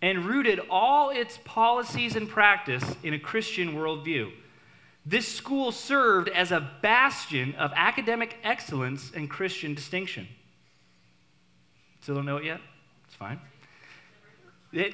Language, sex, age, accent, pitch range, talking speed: English, male, 30-49, American, 145-210 Hz, 120 wpm